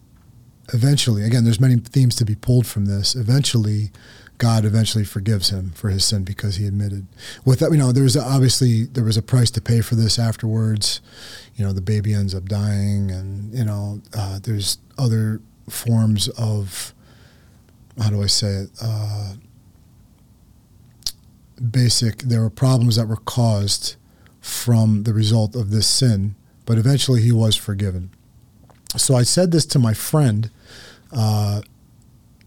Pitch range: 105-120 Hz